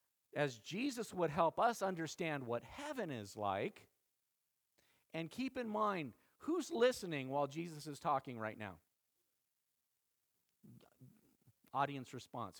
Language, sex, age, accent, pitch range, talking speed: English, male, 50-69, American, 135-215 Hz, 115 wpm